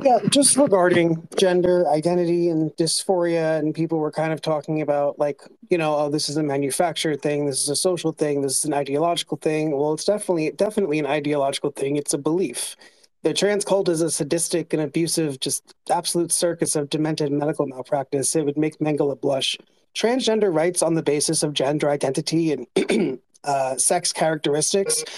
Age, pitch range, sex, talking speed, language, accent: 30-49, 150-180 Hz, male, 180 wpm, English, American